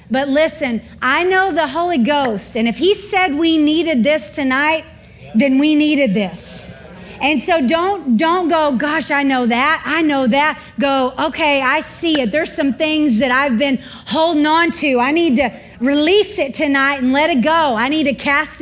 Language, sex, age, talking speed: English, female, 40-59, 190 wpm